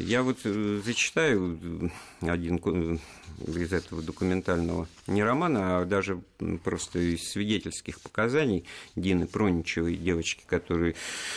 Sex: male